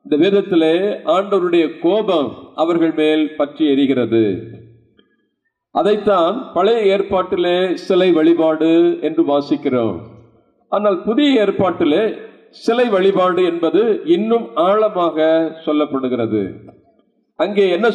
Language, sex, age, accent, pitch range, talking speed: Tamil, male, 50-69, native, 160-210 Hz, 85 wpm